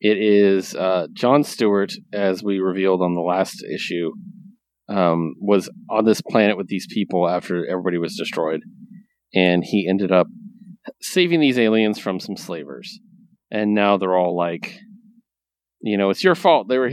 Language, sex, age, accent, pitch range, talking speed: English, male, 30-49, American, 95-145 Hz, 165 wpm